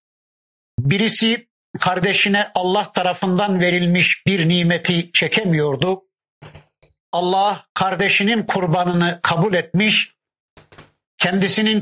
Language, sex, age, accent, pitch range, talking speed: Turkish, male, 50-69, native, 165-200 Hz, 70 wpm